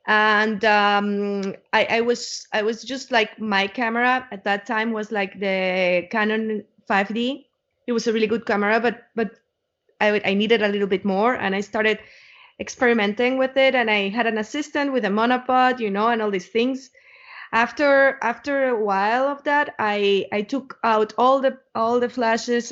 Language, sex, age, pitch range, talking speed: English, female, 20-39, 210-255 Hz, 180 wpm